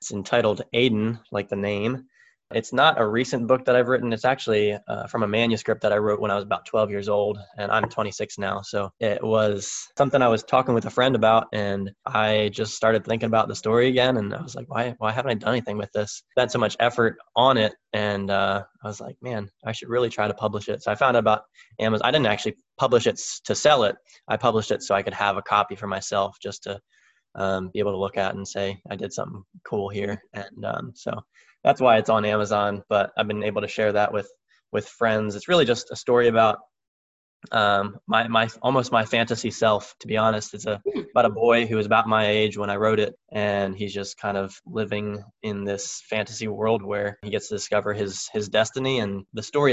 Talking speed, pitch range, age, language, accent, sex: 235 wpm, 105-115 Hz, 20-39, English, American, male